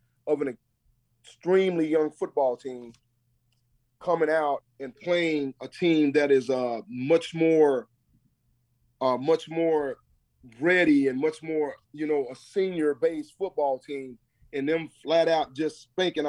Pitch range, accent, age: 130-160 Hz, American, 30-49